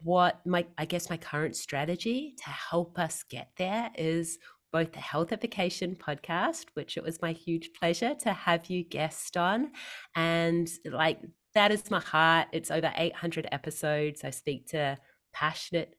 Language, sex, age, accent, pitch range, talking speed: English, female, 30-49, Australian, 155-185 Hz, 160 wpm